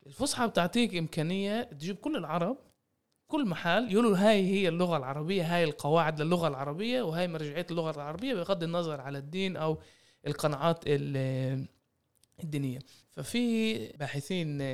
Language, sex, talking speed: Arabic, male, 120 wpm